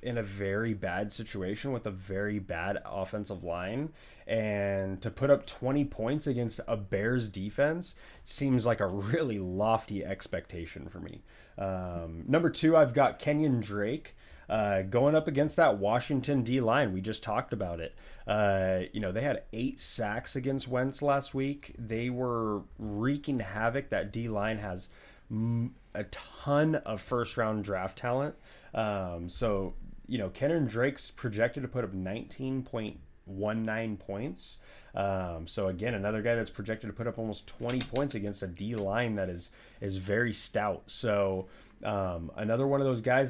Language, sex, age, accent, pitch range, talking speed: English, male, 20-39, American, 100-125 Hz, 165 wpm